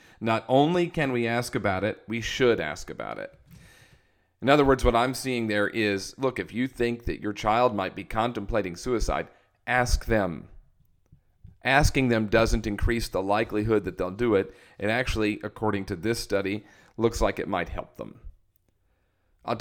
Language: English